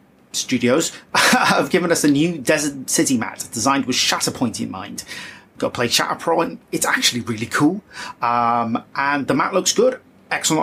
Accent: British